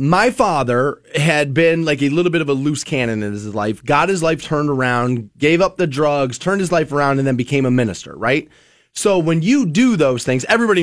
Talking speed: 225 wpm